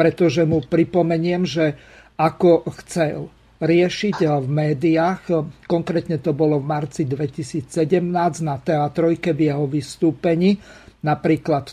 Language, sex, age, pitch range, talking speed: Slovak, male, 50-69, 145-165 Hz, 105 wpm